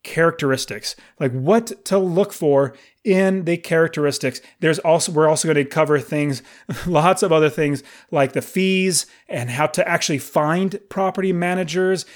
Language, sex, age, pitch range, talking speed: English, male, 30-49, 145-185 Hz, 155 wpm